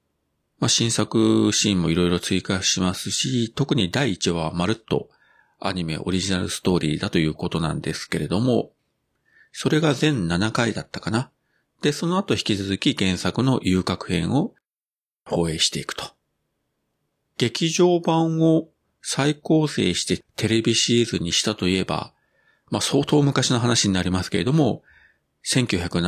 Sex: male